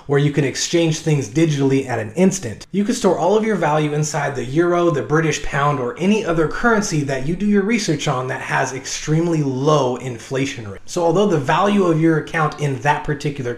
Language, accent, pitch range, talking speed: English, American, 135-170 Hz, 210 wpm